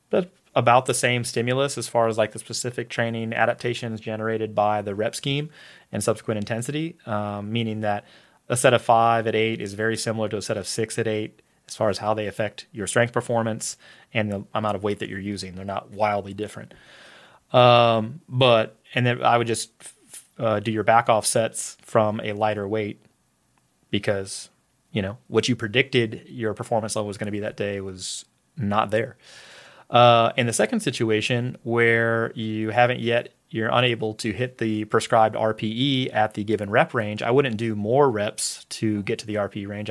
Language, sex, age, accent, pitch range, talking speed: English, male, 30-49, American, 110-120 Hz, 190 wpm